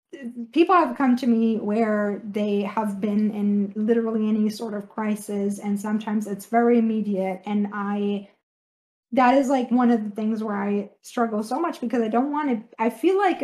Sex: female